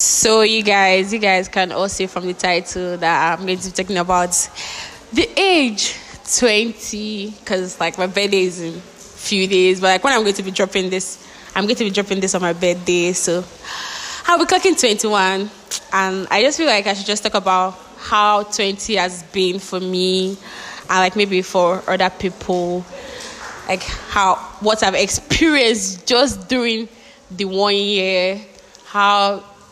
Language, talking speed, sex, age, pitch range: English, 175 wpm, female, 10-29, 185-220 Hz